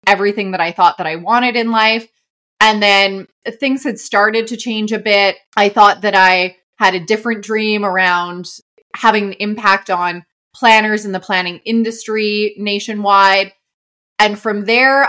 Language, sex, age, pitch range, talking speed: English, female, 20-39, 195-230 Hz, 160 wpm